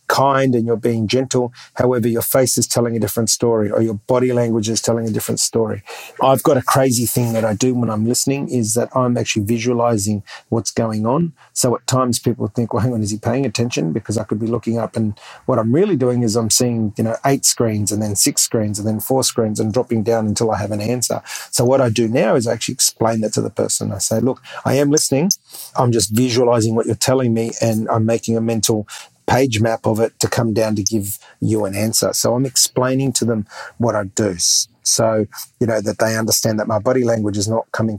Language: English